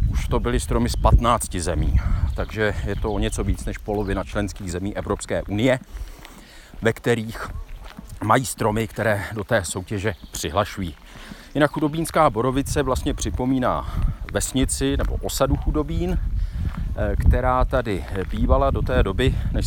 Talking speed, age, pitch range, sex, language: 135 wpm, 40-59, 85-115 Hz, male, Czech